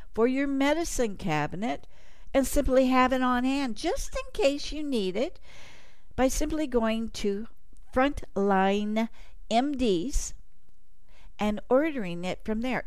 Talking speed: 125 wpm